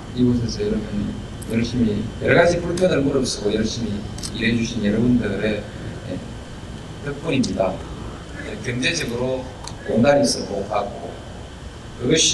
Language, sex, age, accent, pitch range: Korean, male, 40-59, native, 105-130 Hz